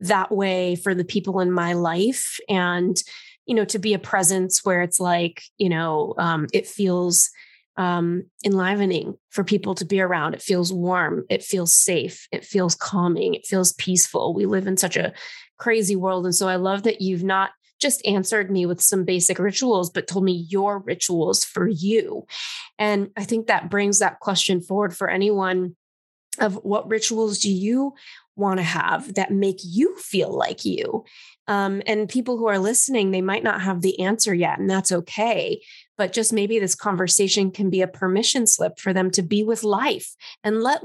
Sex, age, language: female, 20-39, English